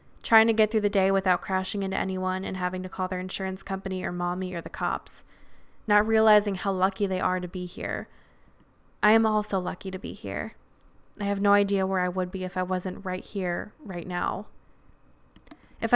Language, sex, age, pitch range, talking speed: English, female, 20-39, 185-210 Hz, 205 wpm